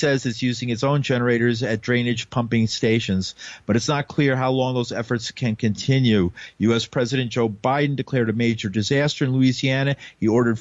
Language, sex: English, male